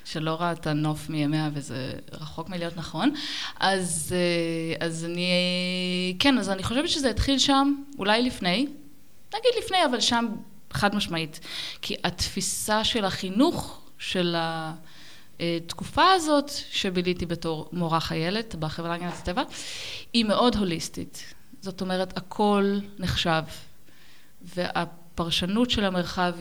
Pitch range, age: 165-225 Hz, 20-39